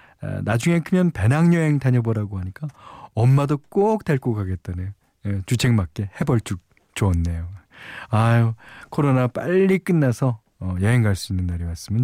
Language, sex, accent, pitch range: Korean, male, native, 100-150 Hz